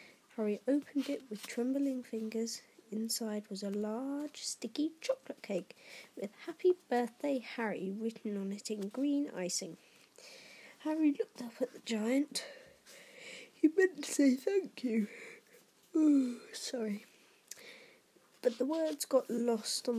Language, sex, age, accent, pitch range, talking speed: English, female, 20-39, British, 220-280 Hz, 130 wpm